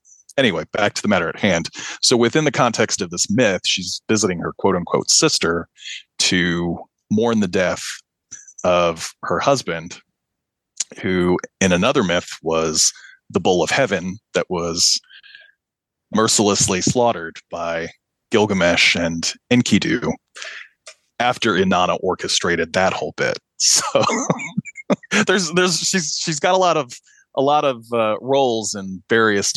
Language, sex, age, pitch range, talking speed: English, male, 30-49, 90-140 Hz, 135 wpm